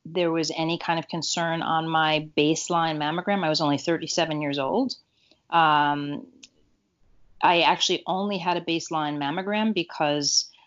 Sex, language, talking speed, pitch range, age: female, English, 140 wpm, 150-175 Hz, 30-49